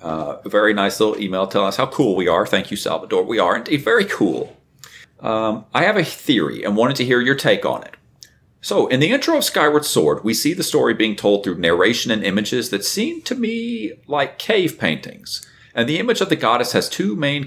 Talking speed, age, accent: 225 wpm, 40-59, American